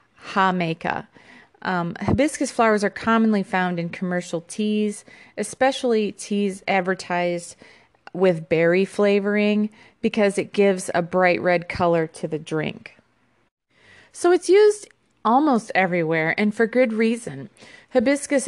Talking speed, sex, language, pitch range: 115 wpm, female, English, 170-225 Hz